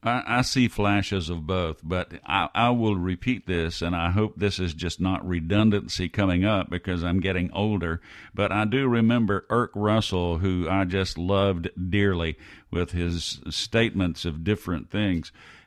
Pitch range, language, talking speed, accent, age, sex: 90-110 Hz, English, 160 wpm, American, 50-69, male